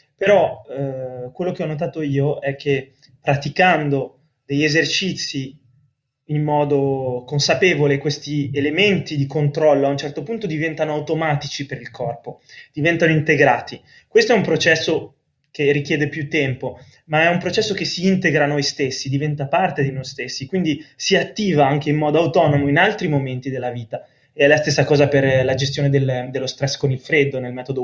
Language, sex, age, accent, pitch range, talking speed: Italian, male, 20-39, native, 135-155 Hz, 170 wpm